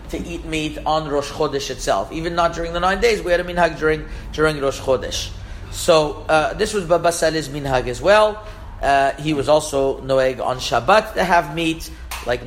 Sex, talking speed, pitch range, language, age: male, 195 wpm, 145-180 Hz, English, 40-59